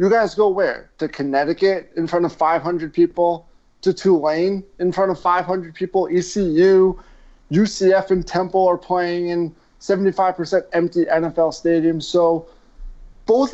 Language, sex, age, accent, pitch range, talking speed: English, male, 30-49, American, 155-190 Hz, 135 wpm